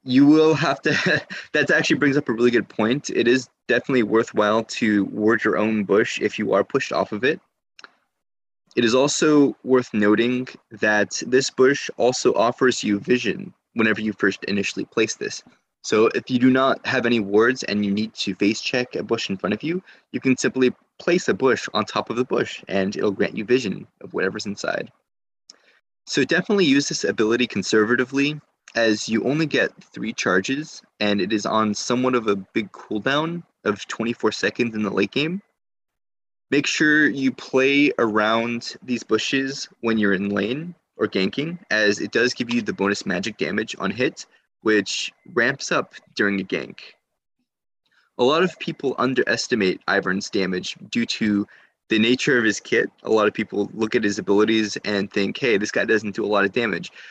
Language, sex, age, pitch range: English, male, 20-39, 105-135 Hz